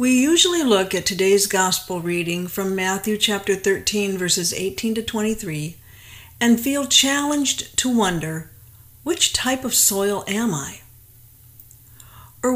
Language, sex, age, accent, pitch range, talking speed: English, female, 50-69, American, 165-225 Hz, 130 wpm